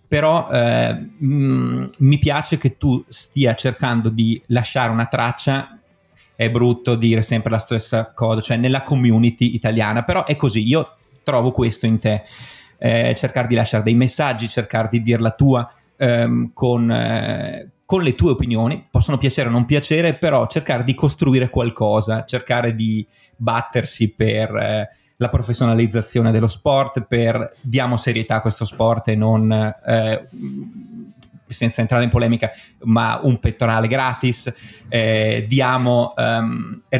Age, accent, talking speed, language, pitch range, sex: 30-49, native, 145 wpm, Italian, 110-125 Hz, male